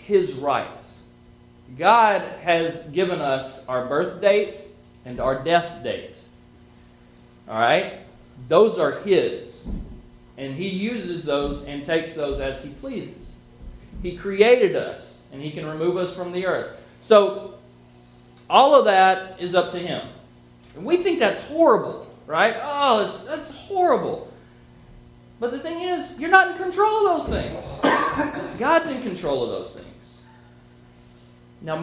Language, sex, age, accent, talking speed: English, male, 30-49, American, 140 wpm